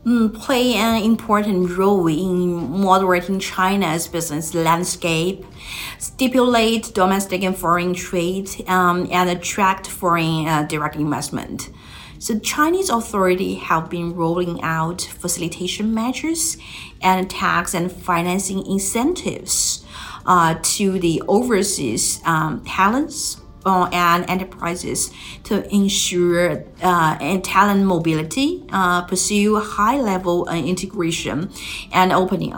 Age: 50-69